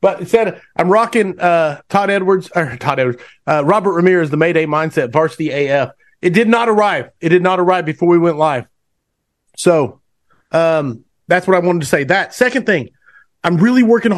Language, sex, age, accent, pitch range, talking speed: English, male, 30-49, American, 135-180 Hz, 185 wpm